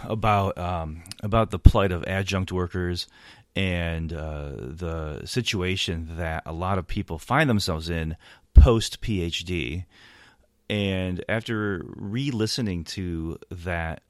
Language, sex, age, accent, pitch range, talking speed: English, male, 30-49, American, 80-100 Hz, 110 wpm